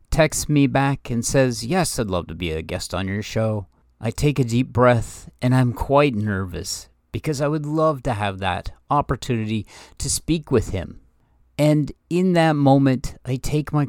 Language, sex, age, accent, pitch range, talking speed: English, male, 50-69, American, 100-140 Hz, 185 wpm